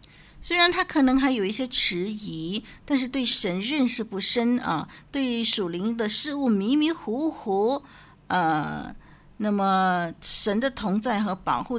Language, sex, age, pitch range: Chinese, female, 50-69, 185-270 Hz